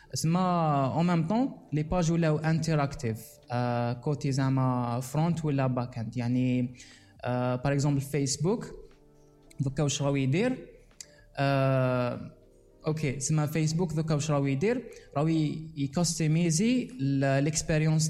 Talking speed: 90 wpm